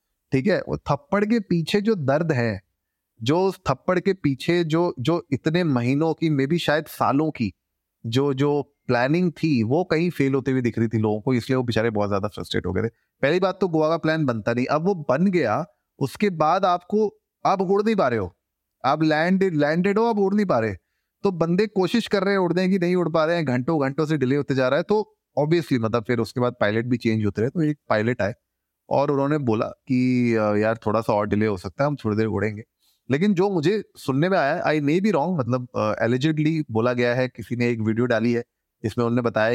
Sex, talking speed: male, 195 wpm